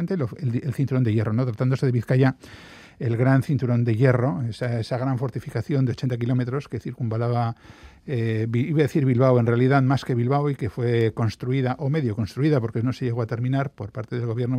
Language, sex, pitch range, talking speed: Spanish, male, 115-135 Hz, 205 wpm